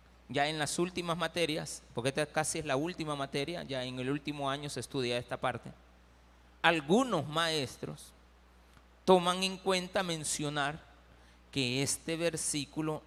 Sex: male